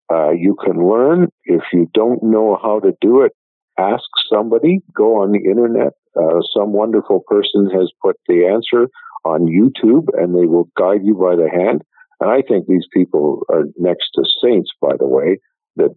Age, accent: 50-69, American